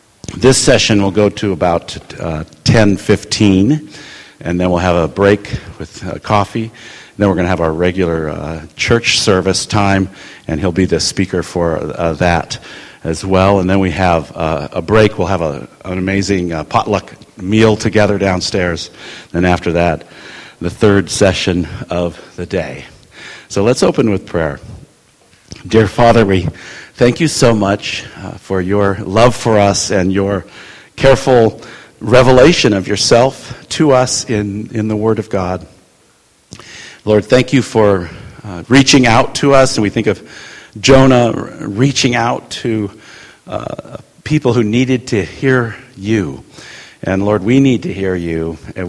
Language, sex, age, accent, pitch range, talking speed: English, male, 50-69, American, 90-115 Hz, 155 wpm